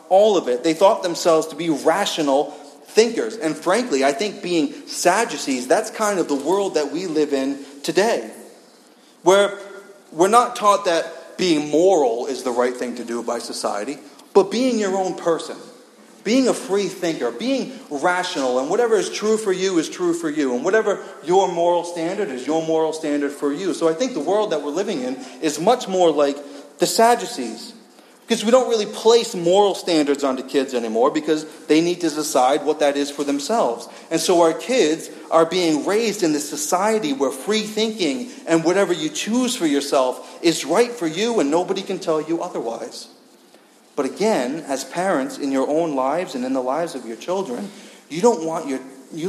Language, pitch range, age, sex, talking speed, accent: English, 150-215 Hz, 40-59, male, 185 wpm, American